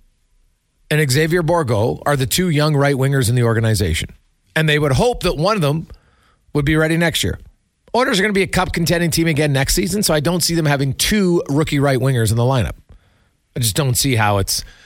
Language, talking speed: English, 225 wpm